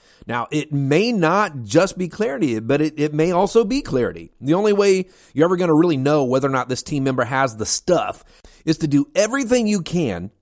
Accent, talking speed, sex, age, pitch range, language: American, 220 wpm, male, 40-59, 125-175 Hz, English